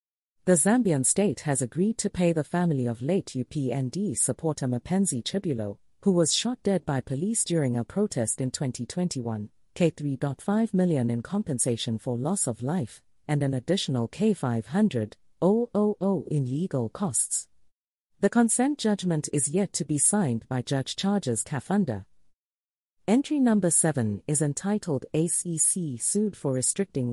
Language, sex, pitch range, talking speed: English, female, 125-195 Hz, 135 wpm